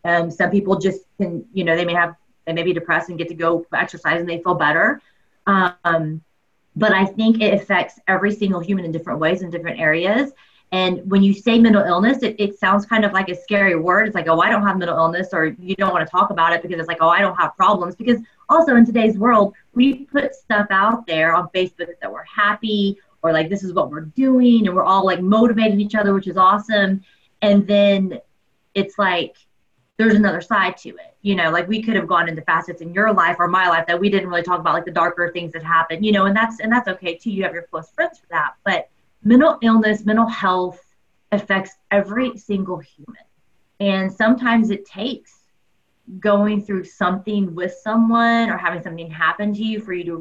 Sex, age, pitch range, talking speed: female, 30-49, 175-215 Hz, 225 wpm